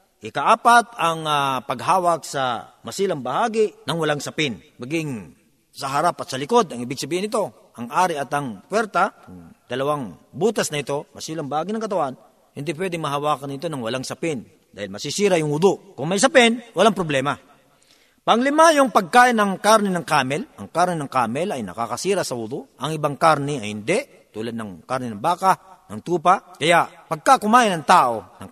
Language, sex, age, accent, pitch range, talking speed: Filipino, male, 40-59, native, 135-185 Hz, 175 wpm